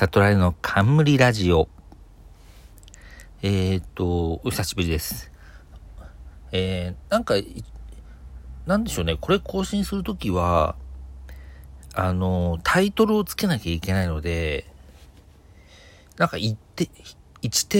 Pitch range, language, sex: 85-115 Hz, Japanese, male